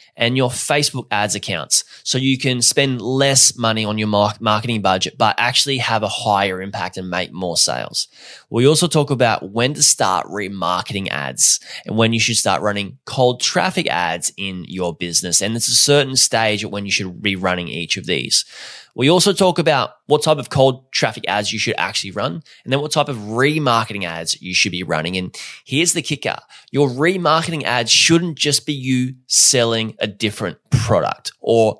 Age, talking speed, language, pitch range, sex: 20-39, 190 wpm, English, 105-135 Hz, male